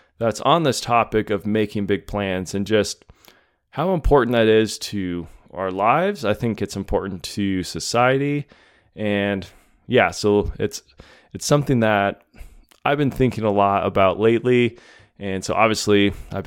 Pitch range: 100-120 Hz